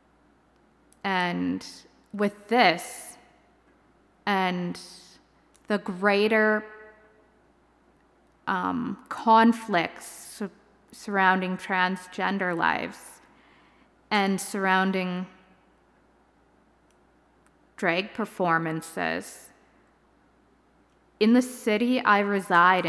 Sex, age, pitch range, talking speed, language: female, 20-39, 175-205 Hz, 50 wpm, English